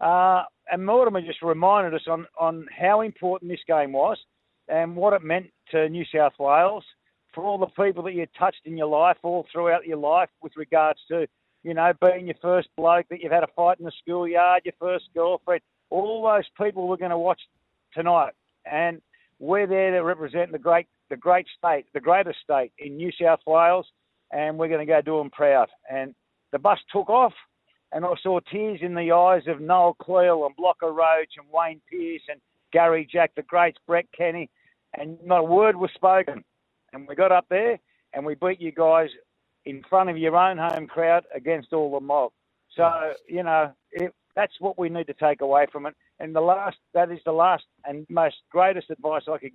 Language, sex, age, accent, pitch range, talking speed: English, male, 50-69, Australian, 155-180 Hz, 205 wpm